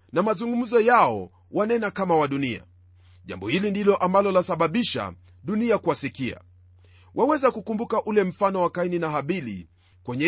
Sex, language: male, Swahili